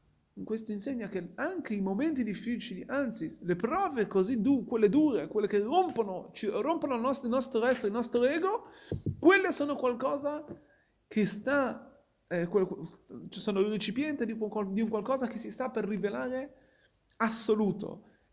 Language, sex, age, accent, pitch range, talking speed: Italian, male, 30-49, native, 195-255 Hz, 165 wpm